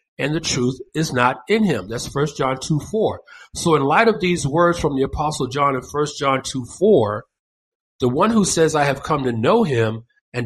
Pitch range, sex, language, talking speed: 125-170 Hz, male, English, 220 wpm